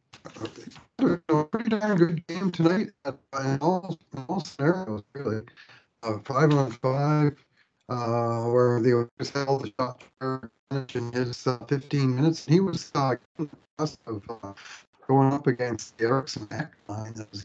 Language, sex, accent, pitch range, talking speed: English, male, American, 110-140 Hz, 140 wpm